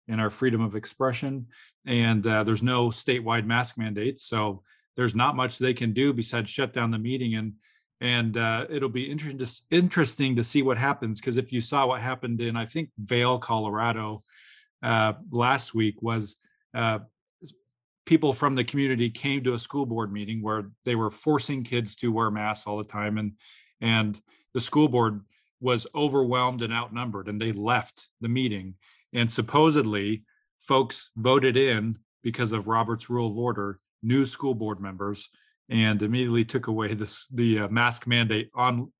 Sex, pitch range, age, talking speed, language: male, 110-130 Hz, 40-59, 170 wpm, English